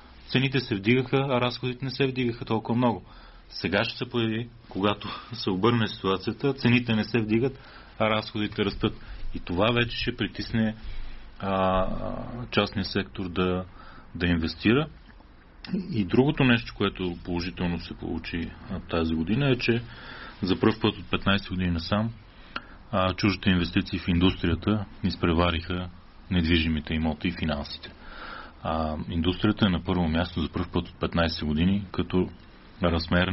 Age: 30-49